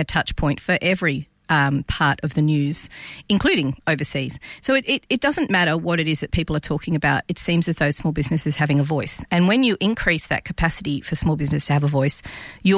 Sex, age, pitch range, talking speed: female, 40-59, 145-180 Hz, 230 wpm